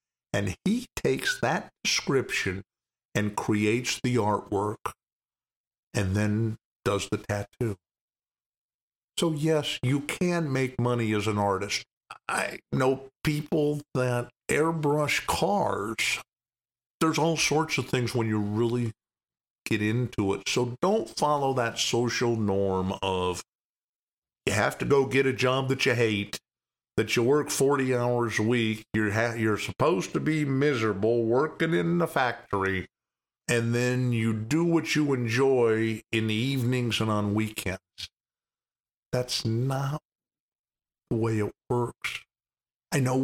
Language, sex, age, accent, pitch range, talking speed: English, male, 50-69, American, 110-145 Hz, 130 wpm